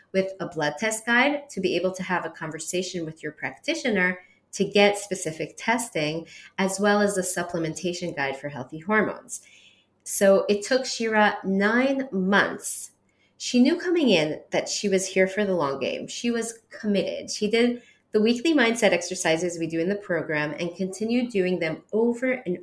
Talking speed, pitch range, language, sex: 175 wpm, 175-225 Hz, English, female